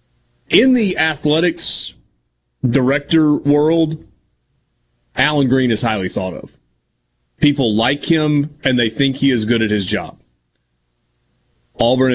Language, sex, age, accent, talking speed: English, male, 30-49, American, 120 wpm